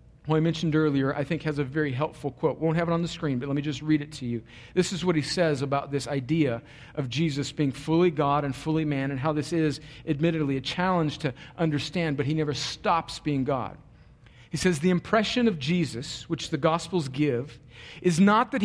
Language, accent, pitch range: English, American, 135-200 Hz